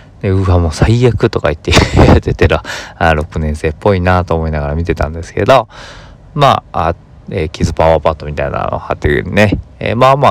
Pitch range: 80-105 Hz